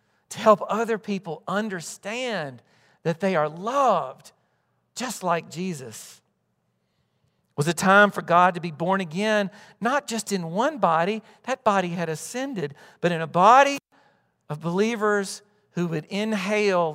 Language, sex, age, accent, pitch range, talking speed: English, male, 50-69, American, 160-220 Hz, 140 wpm